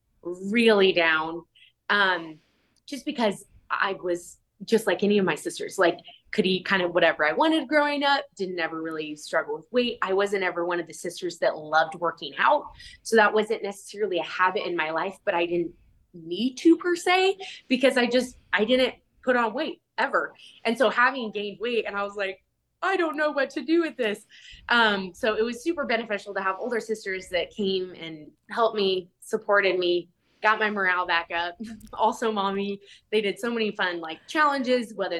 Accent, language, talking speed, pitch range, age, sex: American, English, 195 wpm, 180-240 Hz, 20-39, female